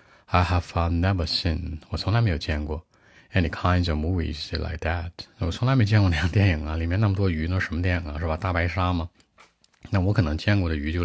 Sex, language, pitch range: male, Chinese, 80-100 Hz